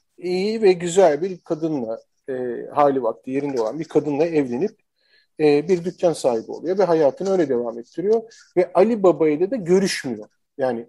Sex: male